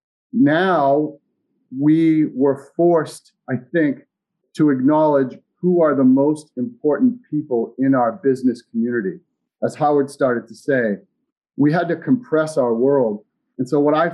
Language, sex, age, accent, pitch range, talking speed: English, male, 40-59, American, 130-160 Hz, 140 wpm